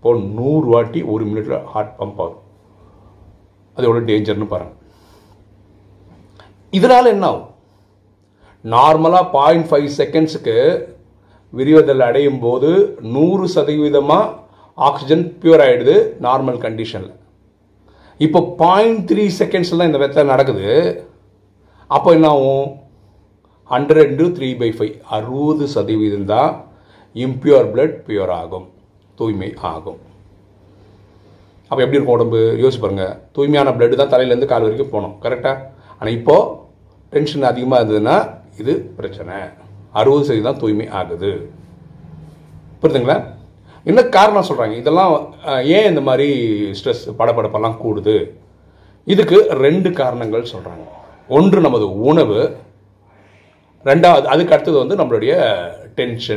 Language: Tamil